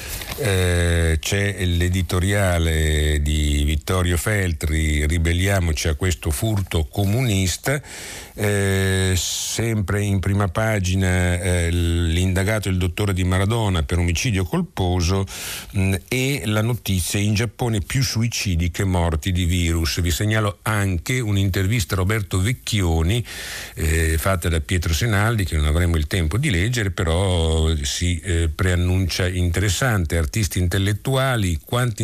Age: 50-69